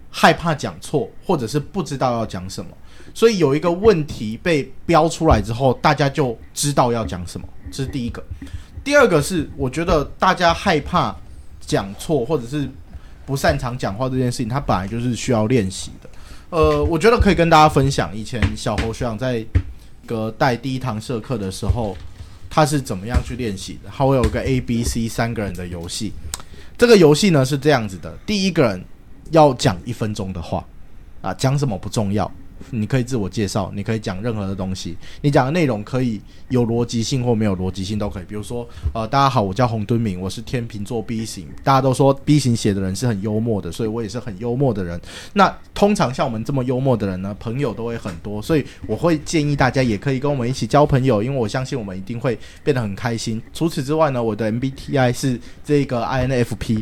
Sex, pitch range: male, 100-135 Hz